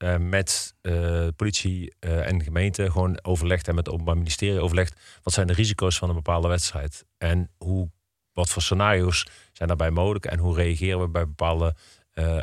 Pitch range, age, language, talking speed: 85-95 Hz, 40-59, Dutch, 180 wpm